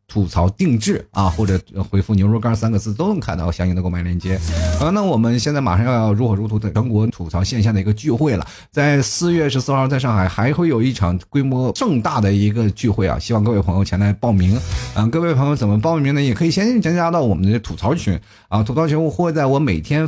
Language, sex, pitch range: Chinese, male, 95-135 Hz